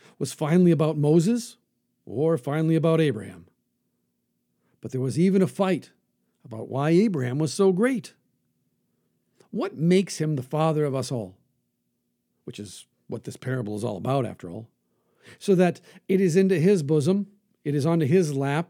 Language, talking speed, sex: English, 160 wpm, male